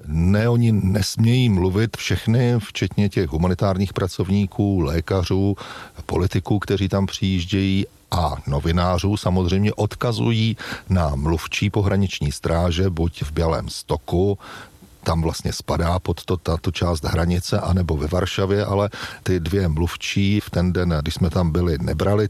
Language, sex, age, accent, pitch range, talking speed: Czech, male, 40-59, native, 90-105 Hz, 130 wpm